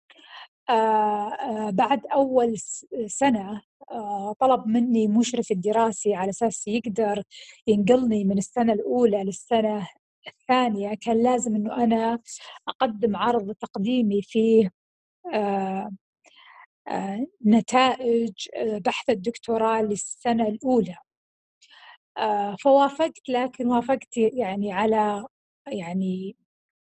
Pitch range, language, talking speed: 205-245 Hz, Arabic, 80 wpm